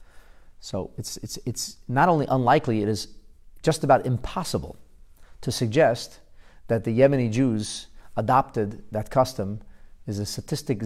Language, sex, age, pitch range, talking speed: English, male, 40-59, 100-135 Hz, 135 wpm